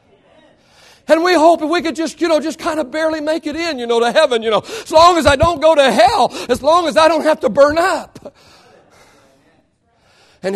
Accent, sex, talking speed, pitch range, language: American, male, 225 wpm, 200-325 Hz, English